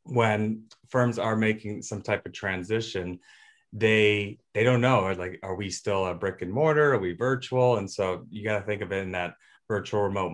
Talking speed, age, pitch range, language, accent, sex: 205 wpm, 30-49, 105-120 Hz, English, American, male